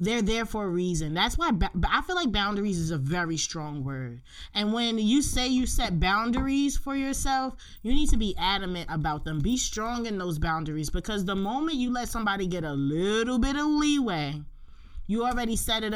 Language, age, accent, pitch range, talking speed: English, 20-39, American, 170-235 Hz, 205 wpm